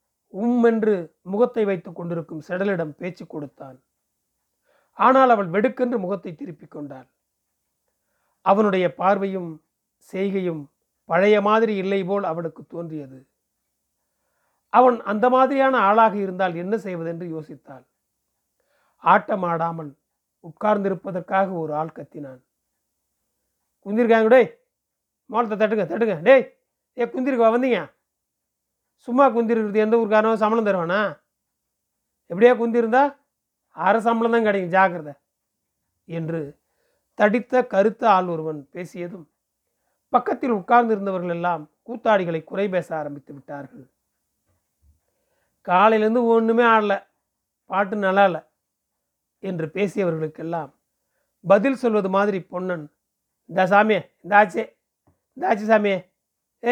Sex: male